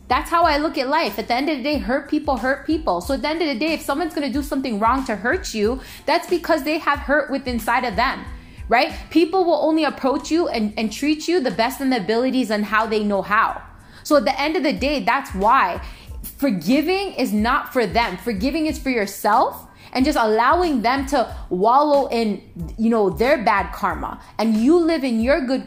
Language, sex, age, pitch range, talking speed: English, female, 20-39, 230-300 Hz, 230 wpm